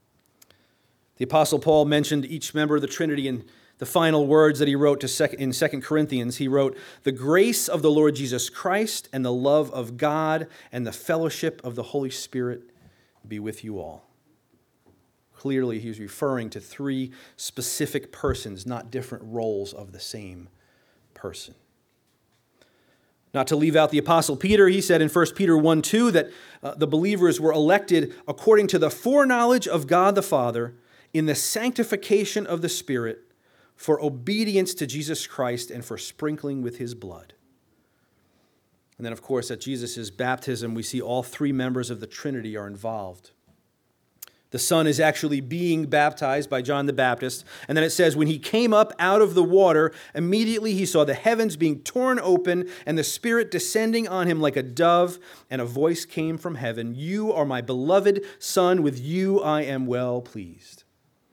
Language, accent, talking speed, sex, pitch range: English, American, 175 wpm, male, 125-170 Hz